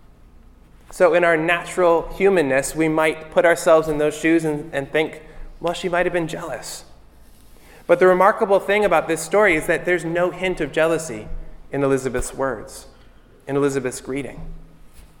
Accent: American